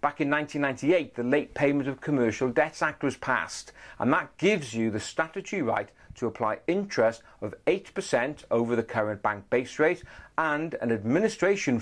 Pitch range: 120-155 Hz